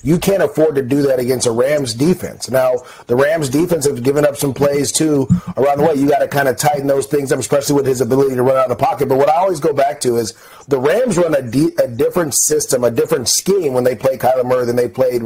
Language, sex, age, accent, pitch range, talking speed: English, male, 30-49, American, 130-160 Hz, 270 wpm